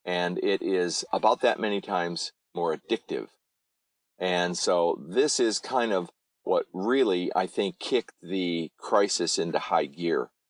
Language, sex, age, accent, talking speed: English, male, 50-69, American, 145 wpm